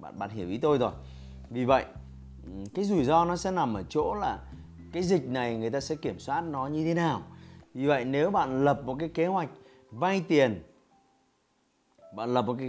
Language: Vietnamese